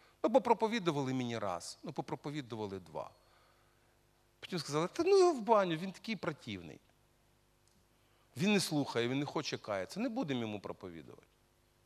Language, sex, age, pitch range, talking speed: Russian, male, 40-59, 125-195 Hz, 130 wpm